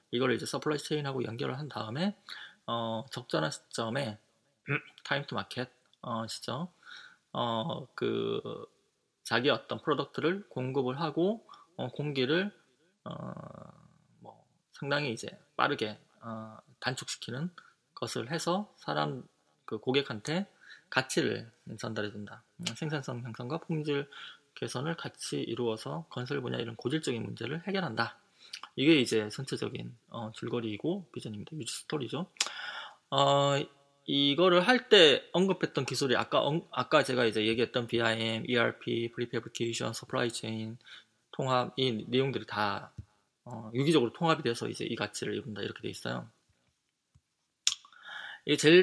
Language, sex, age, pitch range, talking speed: English, male, 20-39, 115-155 Hz, 105 wpm